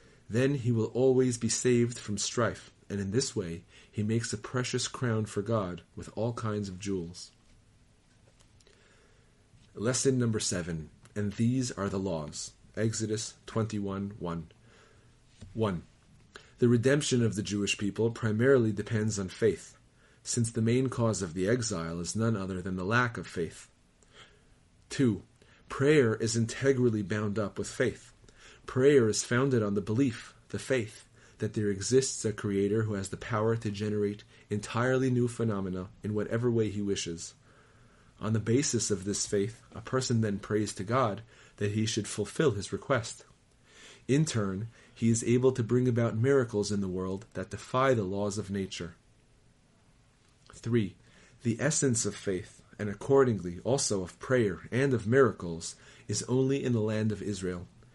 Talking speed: 155 wpm